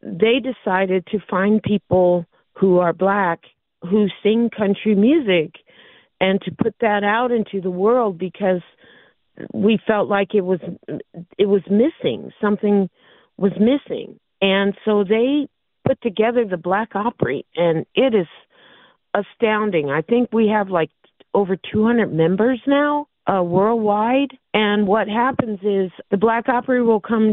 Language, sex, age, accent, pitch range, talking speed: English, female, 50-69, American, 175-215 Hz, 140 wpm